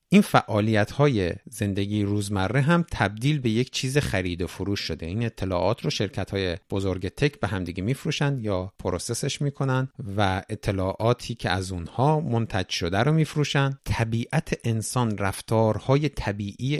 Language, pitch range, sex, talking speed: Persian, 100-135 Hz, male, 135 wpm